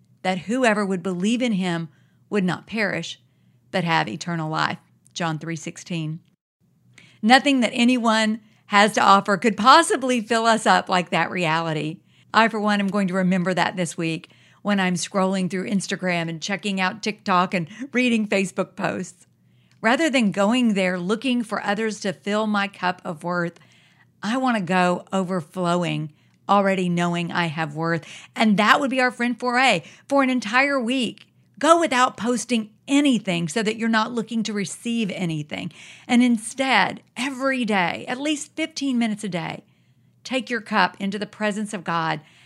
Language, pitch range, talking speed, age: English, 175-230 Hz, 165 wpm, 50-69